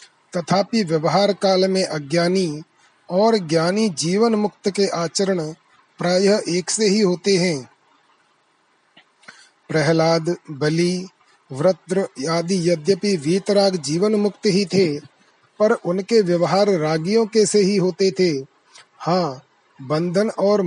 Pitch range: 165-200 Hz